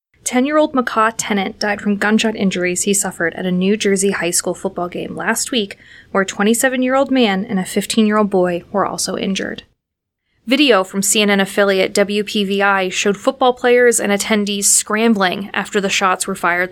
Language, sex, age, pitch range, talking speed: English, female, 20-39, 195-235 Hz, 165 wpm